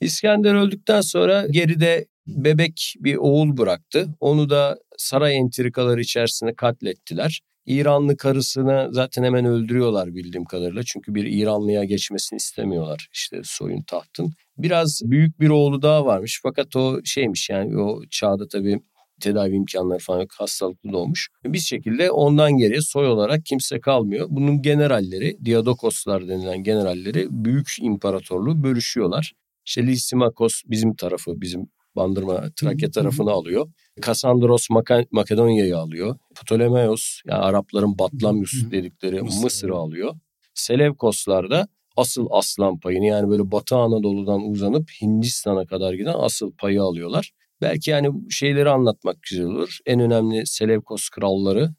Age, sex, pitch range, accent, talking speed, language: 50-69, male, 100-145 Hz, native, 125 wpm, Turkish